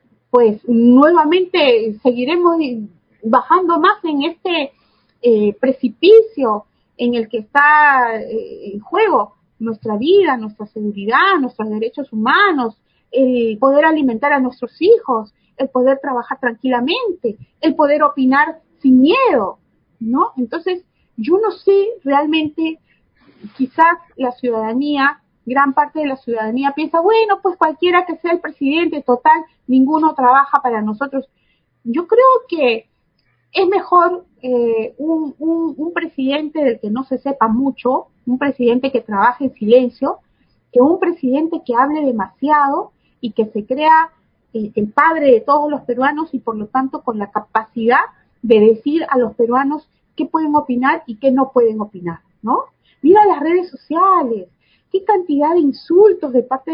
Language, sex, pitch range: Spanish, female, 240-320 Hz